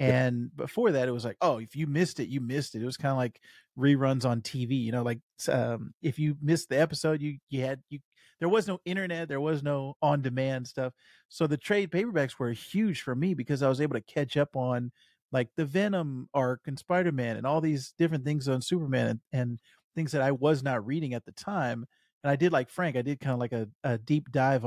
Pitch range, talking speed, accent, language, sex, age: 125-165 Hz, 240 wpm, American, English, male, 40-59